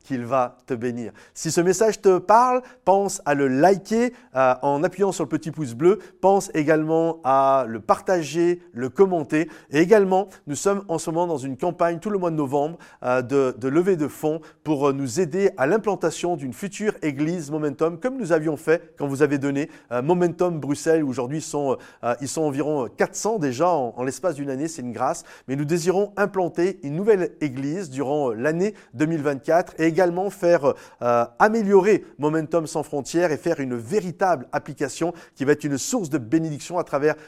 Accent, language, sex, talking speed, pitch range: French, French, male, 190 wpm, 145-185 Hz